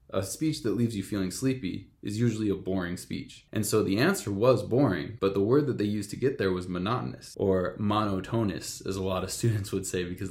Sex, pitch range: male, 95-120 Hz